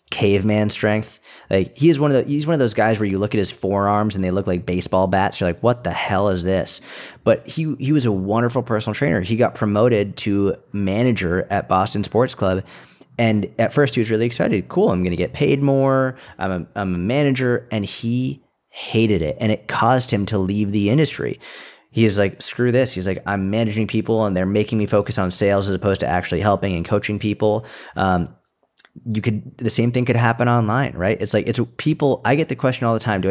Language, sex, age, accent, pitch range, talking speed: English, male, 30-49, American, 95-120 Hz, 230 wpm